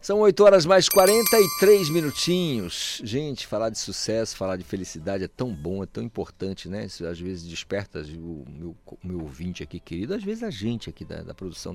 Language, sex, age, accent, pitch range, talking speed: Portuguese, male, 50-69, Brazilian, 90-145 Hz, 190 wpm